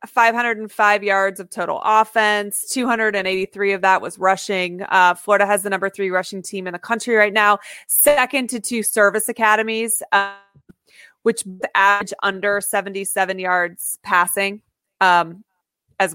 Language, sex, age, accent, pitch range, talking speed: English, female, 30-49, American, 190-225 Hz, 135 wpm